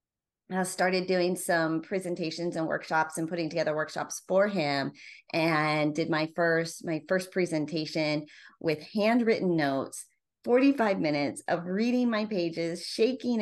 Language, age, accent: English, 30-49, American